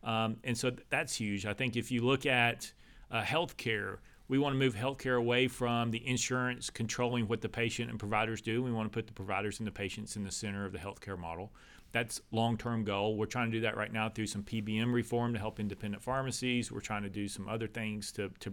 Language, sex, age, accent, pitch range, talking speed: English, male, 40-59, American, 105-120 Hz, 235 wpm